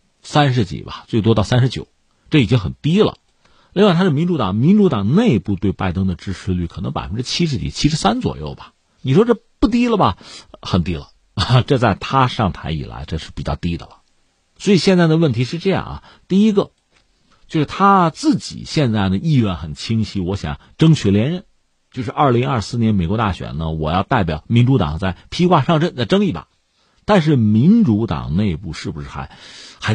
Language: Chinese